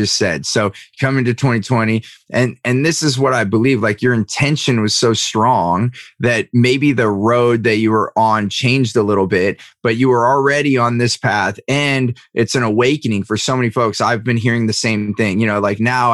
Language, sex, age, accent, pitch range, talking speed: English, male, 30-49, American, 110-130 Hz, 205 wpm